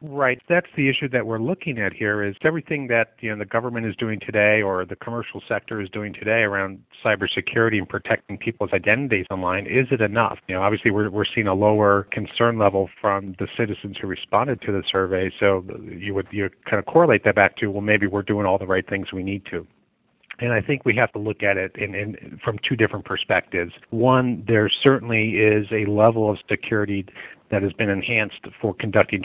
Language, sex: English, male